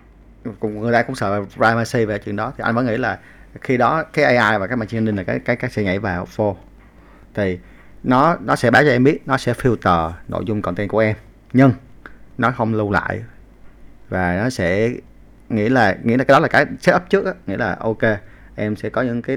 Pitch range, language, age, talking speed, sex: 100-125 Hz, Vietnamese, 20-39, 225 wpm, male